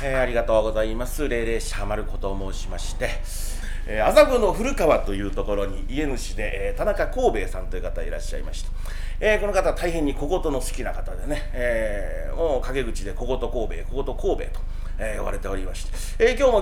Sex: male